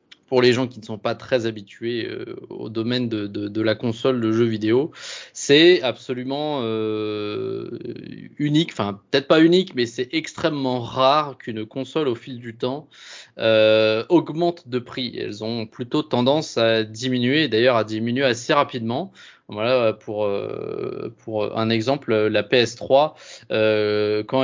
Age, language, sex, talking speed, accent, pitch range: 20-39, French, male, 155 wpm, French, 110-135 Hz